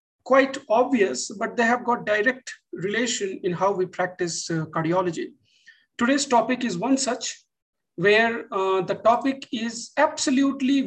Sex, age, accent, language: male, 50-69, Indian, English